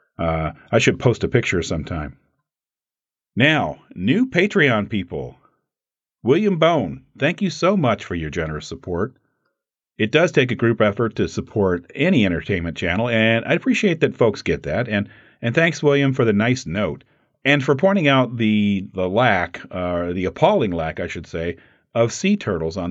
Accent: American